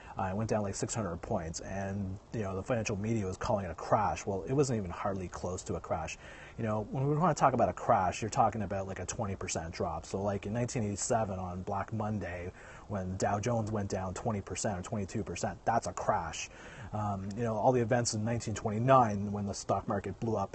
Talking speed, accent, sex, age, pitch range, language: 235 wpm, American, male, 30-49, 95-110 Hz, English